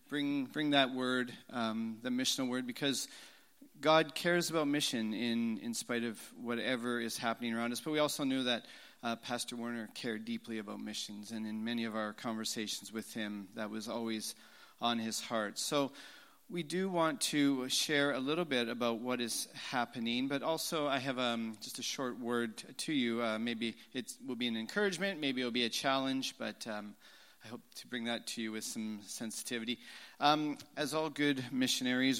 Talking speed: 190 wpm